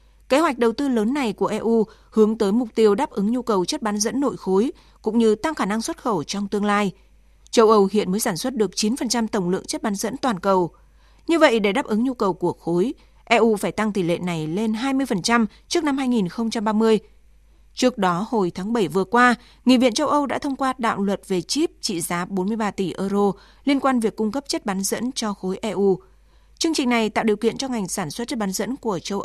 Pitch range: 195-250 Hz